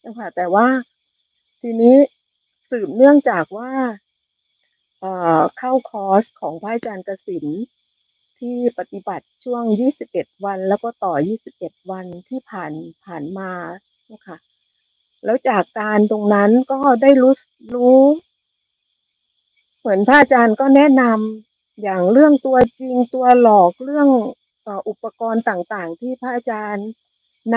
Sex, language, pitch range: female, Thai, 205-255 Hz